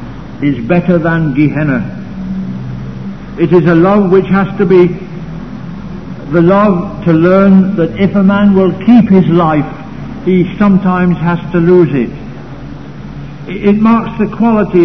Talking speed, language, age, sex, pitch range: 135 wpm, English, 60-79, male, 165-200 Hz